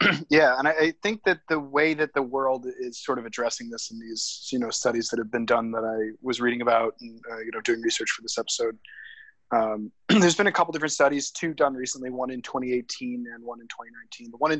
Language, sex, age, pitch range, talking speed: English, male, 20-39, 120-150 Hz, 240 wpm